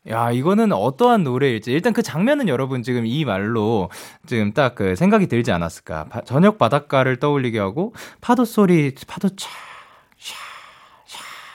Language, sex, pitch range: Korean, male, 115-175 Hz